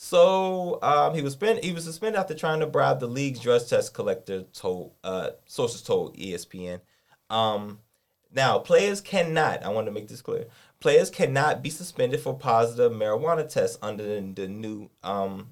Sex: male